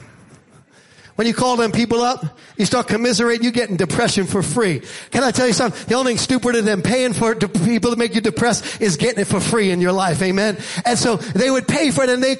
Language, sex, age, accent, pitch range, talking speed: English, male, 40-59, American, 215-275 Hz, 255 wpm